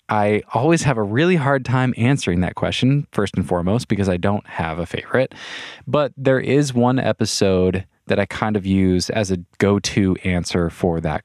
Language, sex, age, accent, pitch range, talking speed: English, male, 20-39, American, 95-115 Hz, 185 wpm